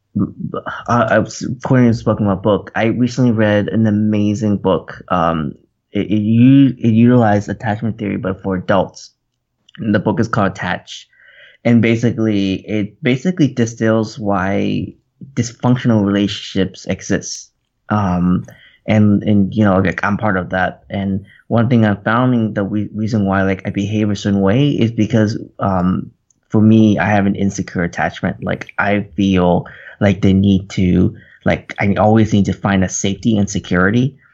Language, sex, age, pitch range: English, male, 20-39, 100-115 Hz